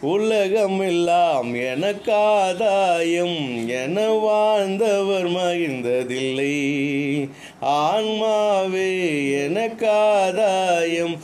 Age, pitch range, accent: 30-49, 155-215 Hz, native